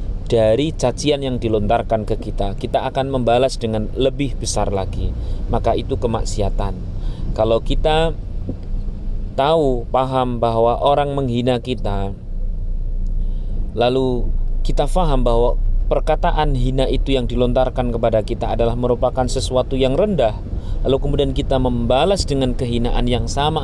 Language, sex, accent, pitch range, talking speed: Indonesian, male, native, 100-135 Hz, 120 wpm